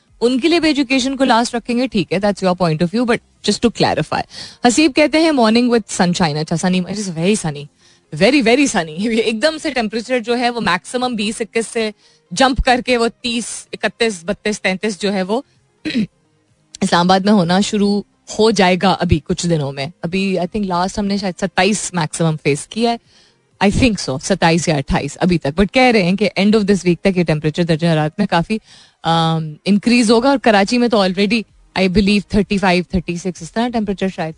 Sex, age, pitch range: female, 20-39, 175-240 Hz